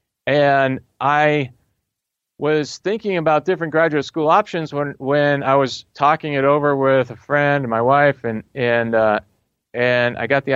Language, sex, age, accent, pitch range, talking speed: English, male, 40-59, American, 120-150 Hz, 165 wpm